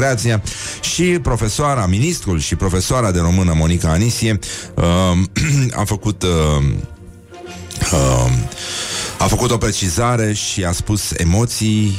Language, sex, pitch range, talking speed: Romanian, male, 90-115 Hz, 110 wpm